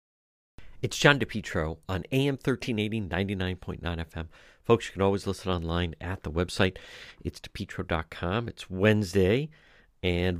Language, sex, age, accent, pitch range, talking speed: English, male, 50-69, American, 90-115 Hz, 125 wpm